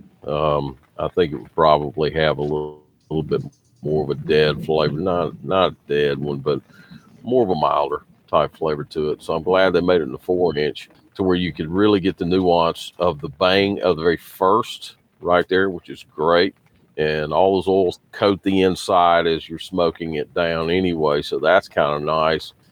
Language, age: English, 50-69